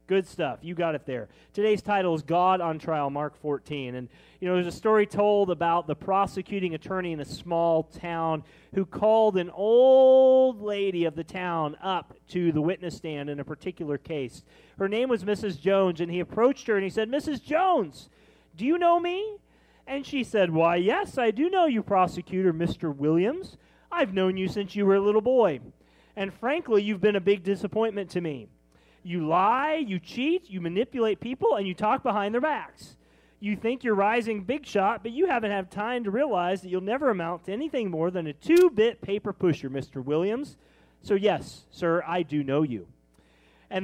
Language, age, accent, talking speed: English, 40-59, American, 195 wpm